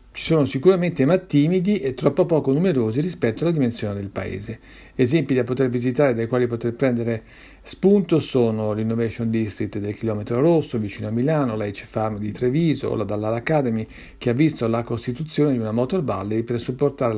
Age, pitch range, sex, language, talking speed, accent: 50-69, 115-140 Hz, male, Italian, 180 wpm, native